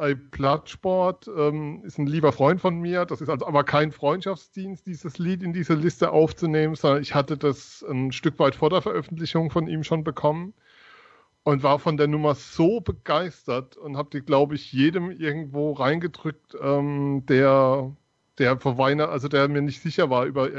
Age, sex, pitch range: 40-59, male, 130-155 Hz